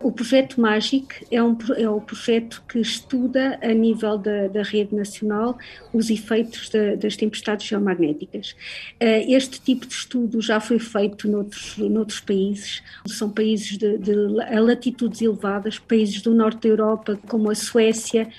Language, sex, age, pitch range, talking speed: Portuguese, female, 50-69, 210-245 Hz, 145 wpm